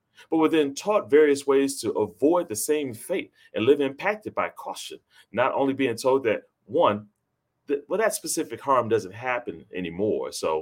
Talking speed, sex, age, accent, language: 170 wpm, male, 30-49, American, English